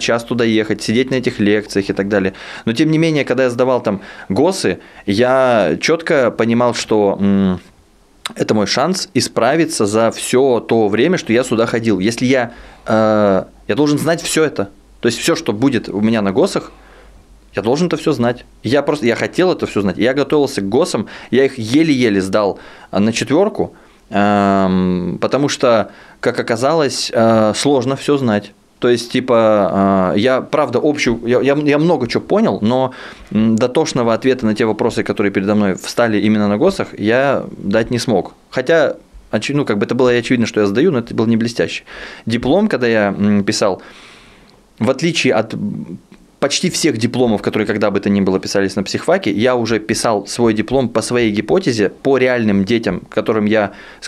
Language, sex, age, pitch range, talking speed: Russian, male, 20-39, 105-130 Hz, 175 wpm